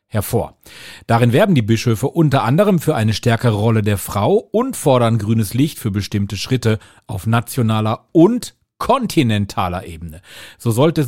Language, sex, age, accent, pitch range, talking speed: German, male, 40-59, German, 105-150 Hz, 150 wpm